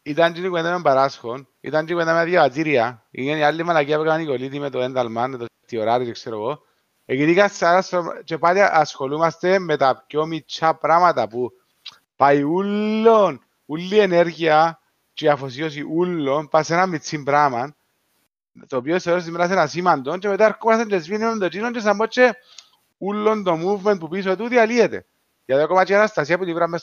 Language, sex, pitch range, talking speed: Greek, male, 145-185 Hz, 110 wpm